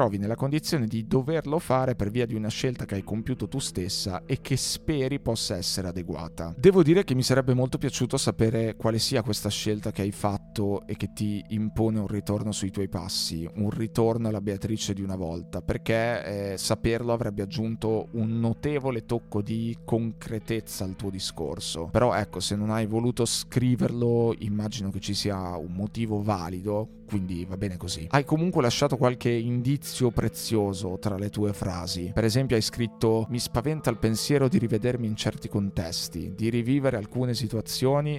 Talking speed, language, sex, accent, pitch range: 175 wpm, Italian, male, native, 100-120 Hz